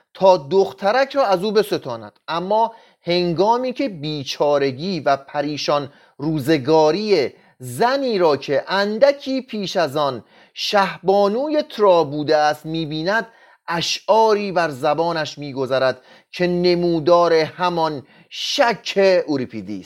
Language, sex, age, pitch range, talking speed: Persian, male, 30-49, 150-220 Hz, 105 wpm